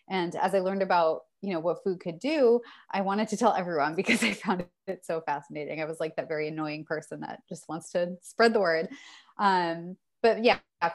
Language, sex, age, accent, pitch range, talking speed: English, female, 20-39, American, 160-215 Hz, 215 wpm